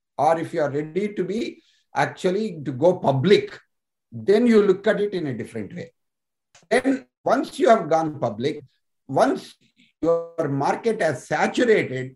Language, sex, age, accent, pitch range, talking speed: Telugu, male, 60-79, native, 140-210 Hz, 155 wpm